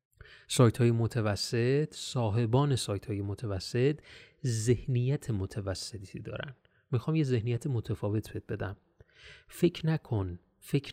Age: 30-49